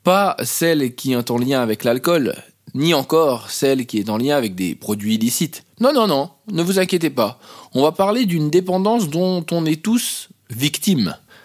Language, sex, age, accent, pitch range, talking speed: French, male, 20-39, French, 120-190 Hz, 190 wpm